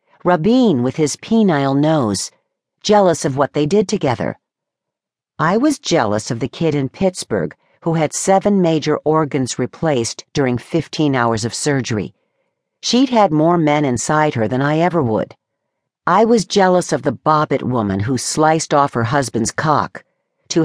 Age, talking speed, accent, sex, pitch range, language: 50-69, 155 wpm, American, female, 140-190 Hz, English